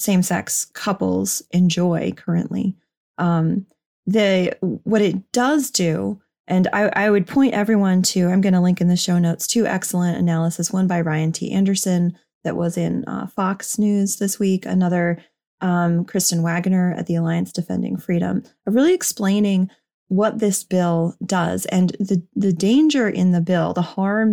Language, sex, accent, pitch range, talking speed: English, female, American, 175-210 Hz, 160 wpm